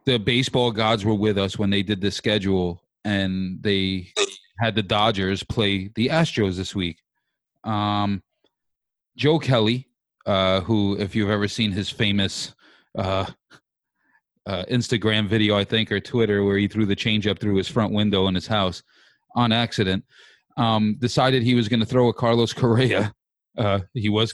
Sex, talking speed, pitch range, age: male, 165 wpm, 100-120 Hz, 30-49